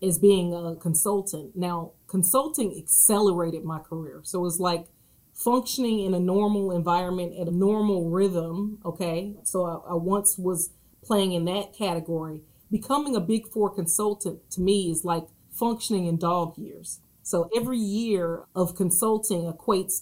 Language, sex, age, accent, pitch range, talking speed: English, female, 30-49, American, 170-205 Hz, 155 wpm